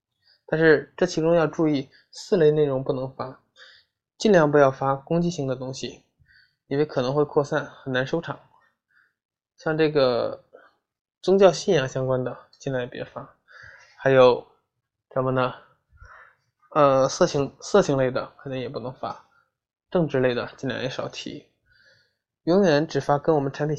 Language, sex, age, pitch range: Chinese, male, 20-39, 135-160 Hz